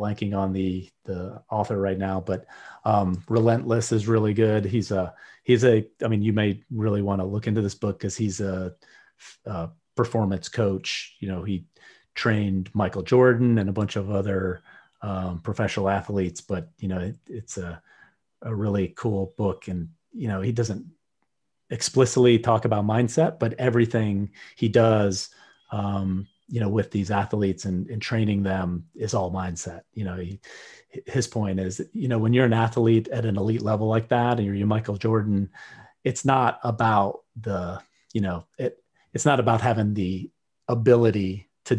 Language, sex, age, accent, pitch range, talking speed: English, male, 30-49, American, 95-115 Hz, 170 wpm